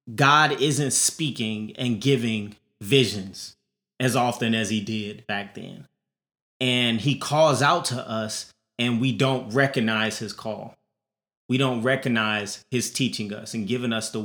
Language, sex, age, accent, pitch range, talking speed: English, male, 20-39, American, 115-150 Hz, 145 wpm